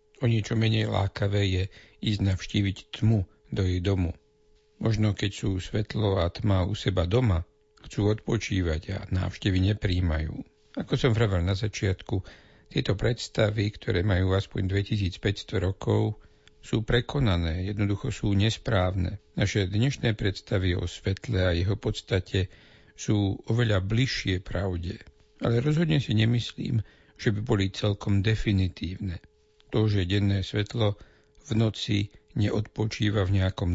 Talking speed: 130 wpm